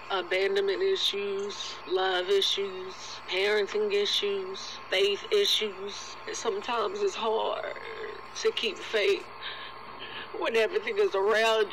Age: 30-49